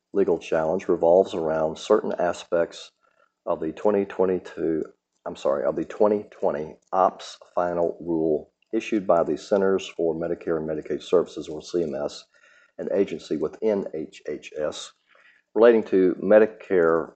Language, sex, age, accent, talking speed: English, male, 50-69, American, 120 wpm